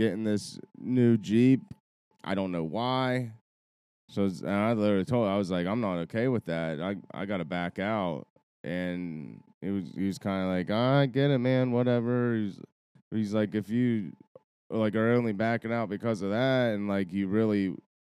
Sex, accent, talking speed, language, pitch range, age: male, American, 190 wpm, English, 95-110 Hz, 20-39